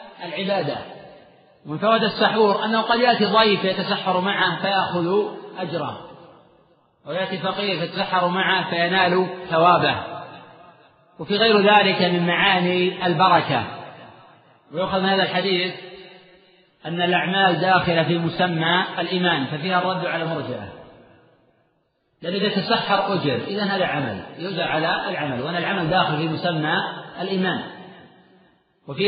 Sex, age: male, 40-59